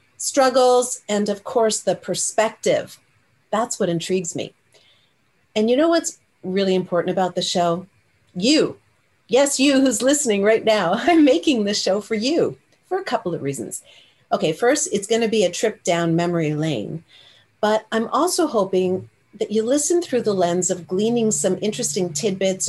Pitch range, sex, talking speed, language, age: 175-225 Hz, female, 165 wpm, English, 40-59